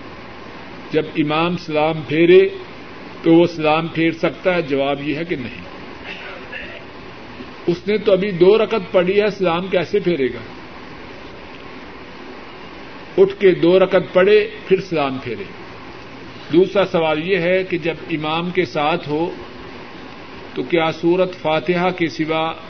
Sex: male